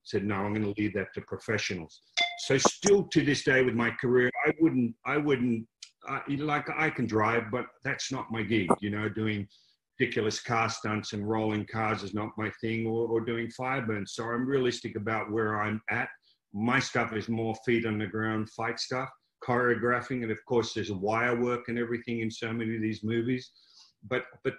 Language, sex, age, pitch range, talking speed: English, male, 50-69, 110-135 Hz, 205 wpm